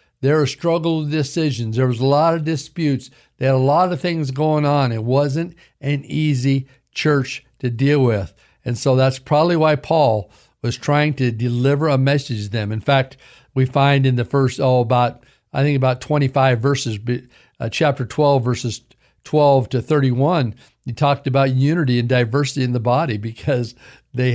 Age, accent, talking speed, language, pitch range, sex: 50-69, American, 175 wpm, English, 120-145 Hz, male